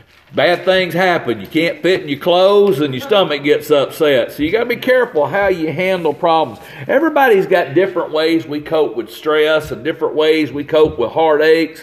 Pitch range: 170-230 Hz